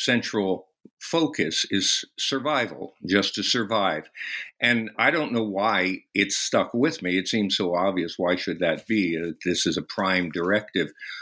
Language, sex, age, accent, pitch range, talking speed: English, male, 60-79, American, 90-105 Hz, 160 wpm